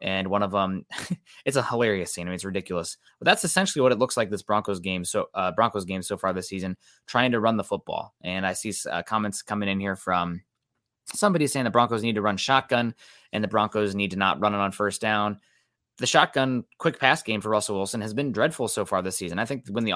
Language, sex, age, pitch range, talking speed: English, male, 20-39, 95-120 Hz, 245 wpm